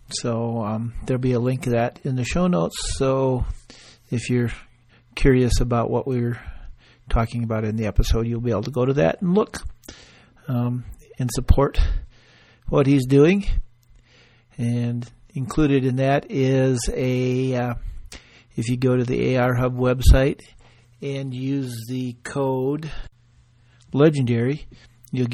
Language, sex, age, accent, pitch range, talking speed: English, male, 50-69, American, 120-140 Hz, 140 wpm